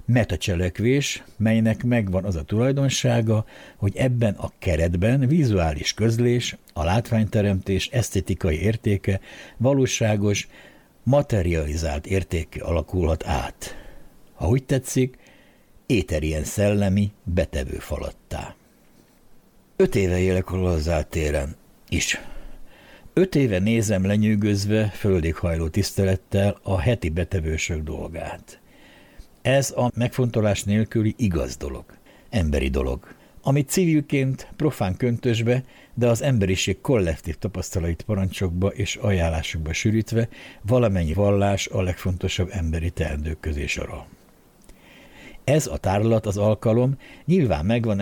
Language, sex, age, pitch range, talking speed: Hungarian, male, 60-79, 90-115 Hz, 100 wpm